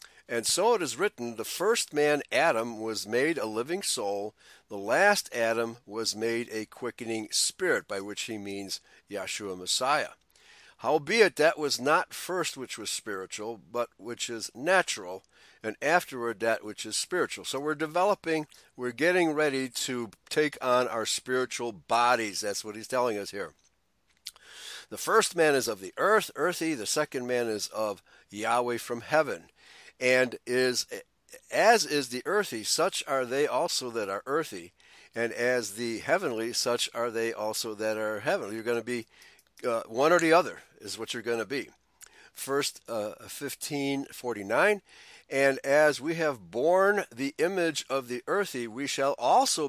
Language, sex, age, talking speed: English, male, 60-79, 165 wpm